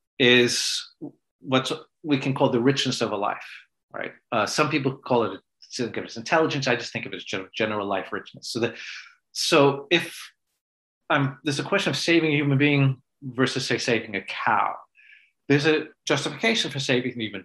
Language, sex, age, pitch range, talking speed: English, male, 40-59, 120-145 Hz, 195 wpm